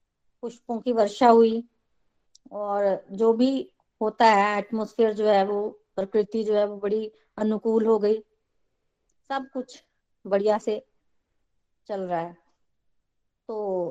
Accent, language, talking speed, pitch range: native, Hindi, 125 wpm, 210-260 Hz